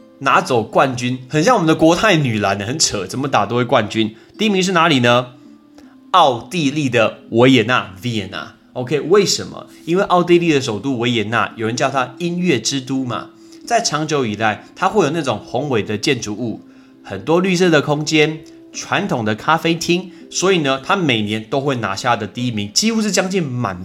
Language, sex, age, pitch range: Chinese, male, 20-39, 110-165 Hz